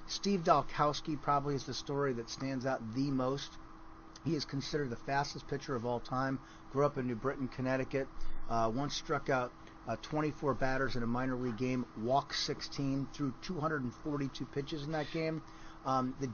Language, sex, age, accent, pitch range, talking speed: English, male, 40-59, American, 125-150 Hz, 175 wpm